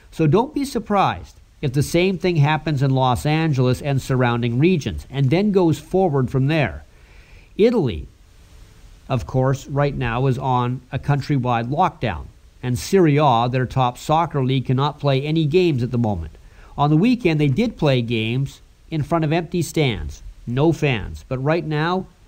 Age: 50-69